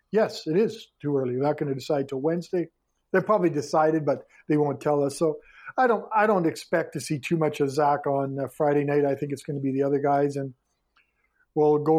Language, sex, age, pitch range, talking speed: English, male, 50-69, 140-165 Hz, 240 wpm